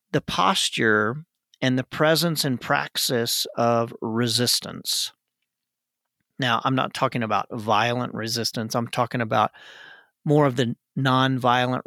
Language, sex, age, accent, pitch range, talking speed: English, male, 40-59, American, 120-150 Hz, 115 wpm